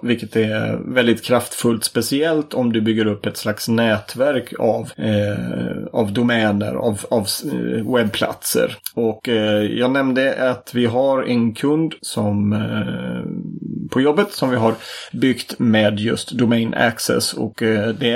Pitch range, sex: 110-130 Hz, male